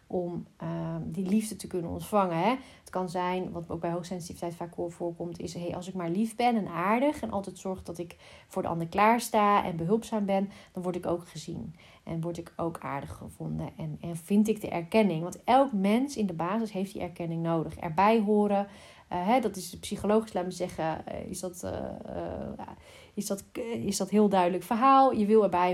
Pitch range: 175-220 Hz